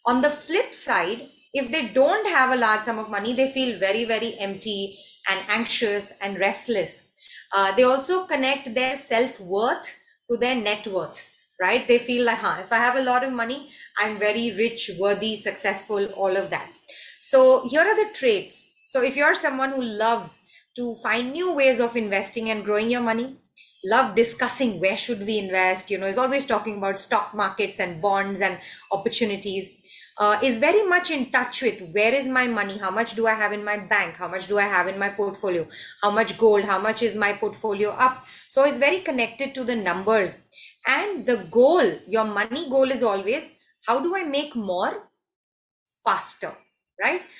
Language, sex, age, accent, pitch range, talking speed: English, female, 30-49, Indian, 200-260 Hz, 190 wpm